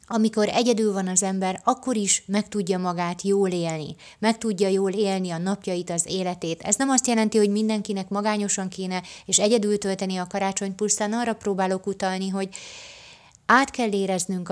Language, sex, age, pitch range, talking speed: Hungarian, female, 30-49, 175-210 Hz, 165 wpm